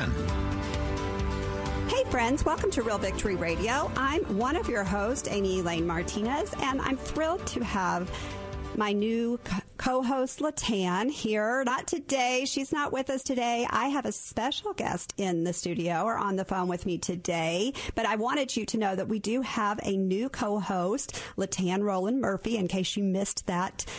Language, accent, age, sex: English, American, 40-59, female